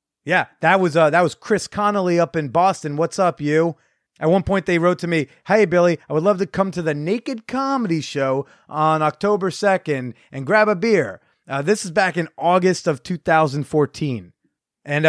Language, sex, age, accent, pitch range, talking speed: English, male, 30-49, American, 145-195 Hz, 195 wpm